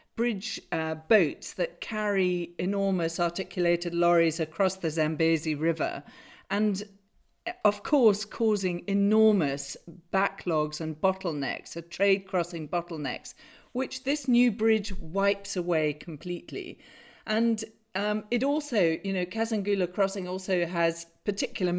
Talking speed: 115 wpm